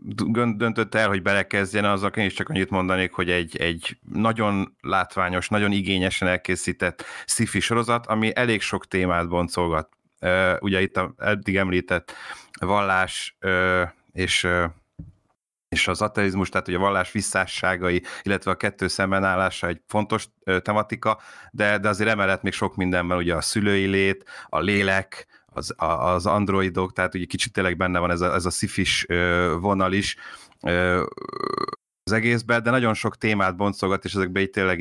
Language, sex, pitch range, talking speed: Hungarian, male, 90-105 Hz, 155 wpm